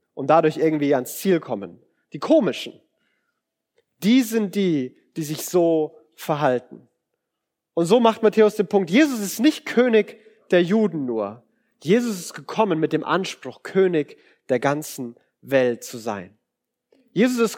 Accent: German